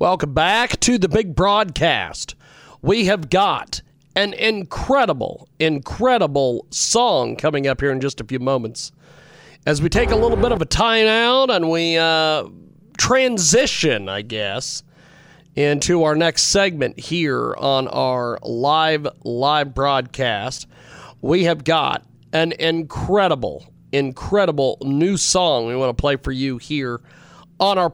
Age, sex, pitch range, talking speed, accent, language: 40-59, male, 145-205 Hz, 135 wpm, American, English